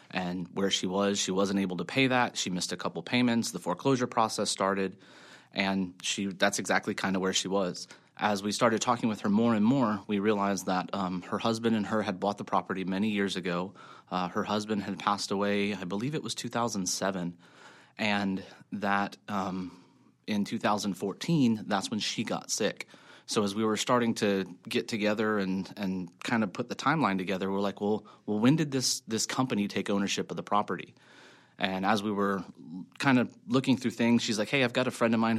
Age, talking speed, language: 30-49, 205 wpm, English